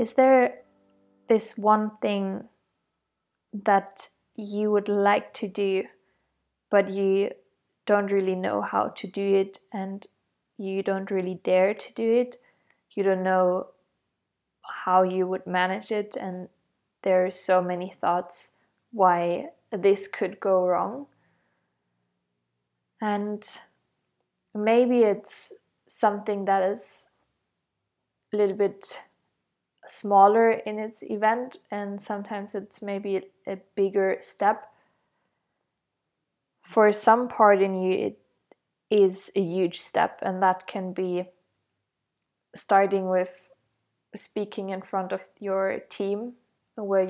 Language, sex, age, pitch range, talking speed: English, female, 20-39, 185-210 Hz, 115 wpm